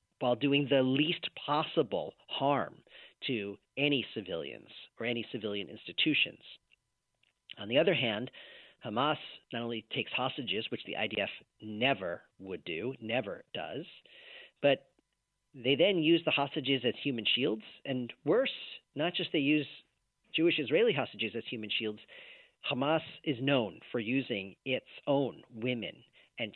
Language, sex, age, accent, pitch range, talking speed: English, male, 40-59, American, 115-145 Hz, 135 wpm